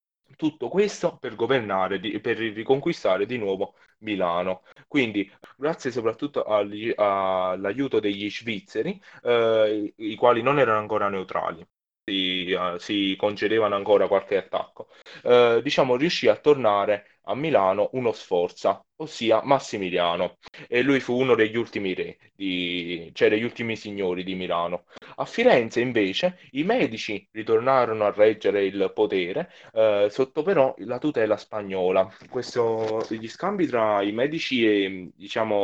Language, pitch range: Italian, 100-150 Hz